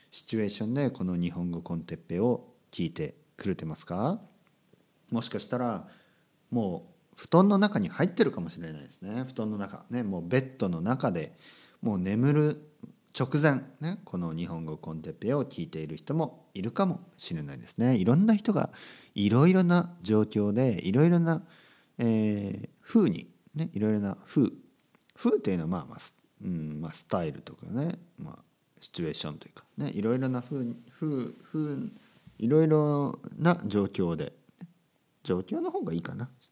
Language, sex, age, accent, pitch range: Japanese, male, 50-69, native, 105-160 Hz